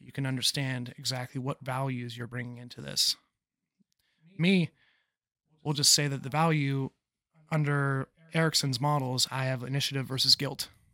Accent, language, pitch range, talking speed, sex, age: American, English, 125-145 Hz, 135 wpm, male, 30-49